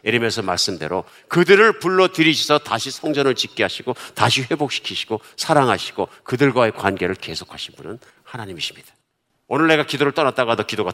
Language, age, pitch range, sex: Korean, 50-69, 100-130 Hz, male